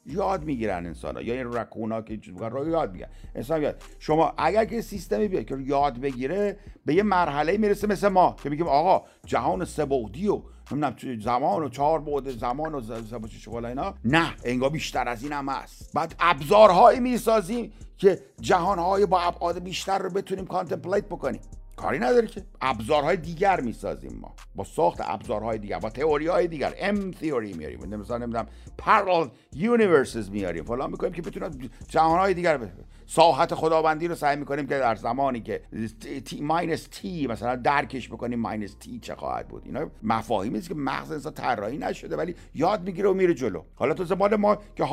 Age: 50-69